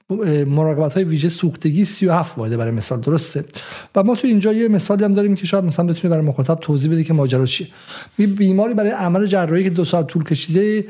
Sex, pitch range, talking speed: male, 145-190 Hz, 205 wpm